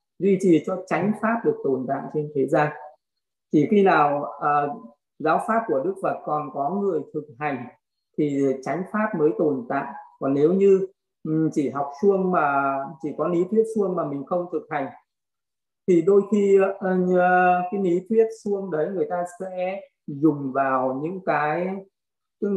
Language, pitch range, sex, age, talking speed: Vietnamese, 150-190 Hz, male, 20-39, 175 wpm